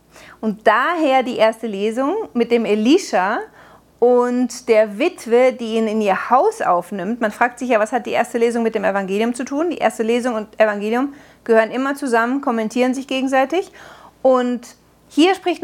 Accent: German